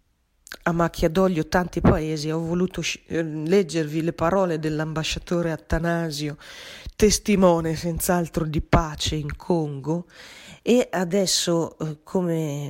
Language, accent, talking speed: Italian, native, 105 wpm